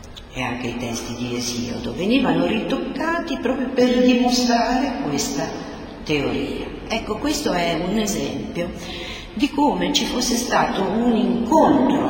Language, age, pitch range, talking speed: Italian, 50-69, 185-280 Hz, 125 wpm